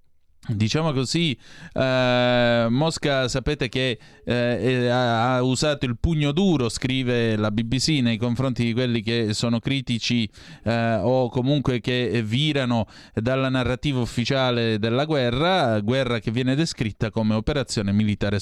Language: Italian